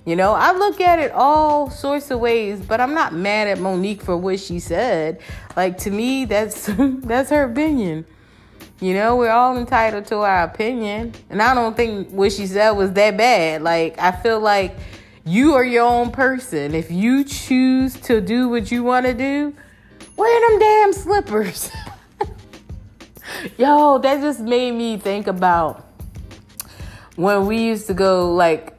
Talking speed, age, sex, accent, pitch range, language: 170 wpm, 20-39, female, American, 170-255 Hz, English